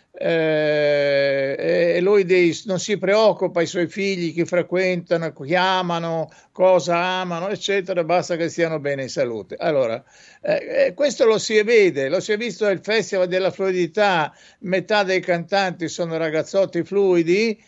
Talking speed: 145 wpm